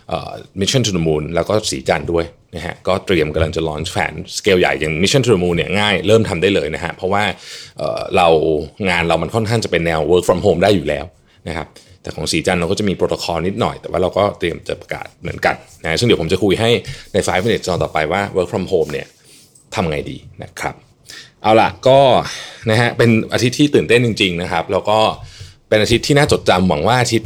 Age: 20-39